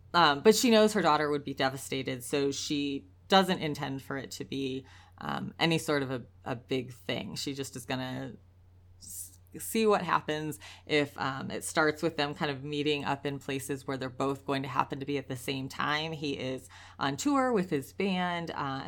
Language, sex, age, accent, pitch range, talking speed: English, female, 30-49, American, 130-160 Hz, 210 wpm